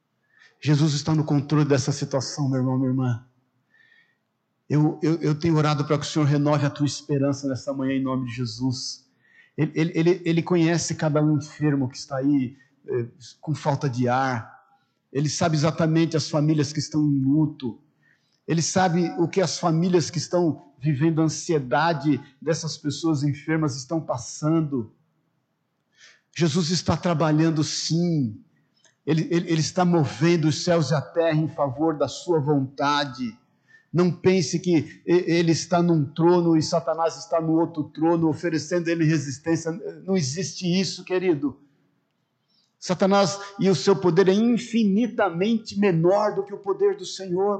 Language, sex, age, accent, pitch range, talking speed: Portuguese, male, 50-69, Brazilian, 145-175 Hz, 155 wpm